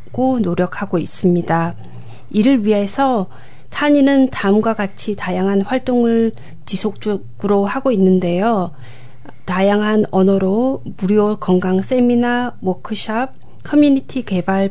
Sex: female